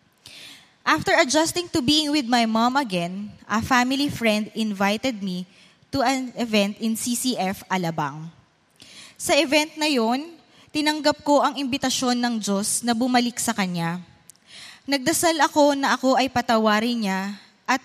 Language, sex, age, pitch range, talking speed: English, female, 20-39, 215-280 Hz, 140 wpm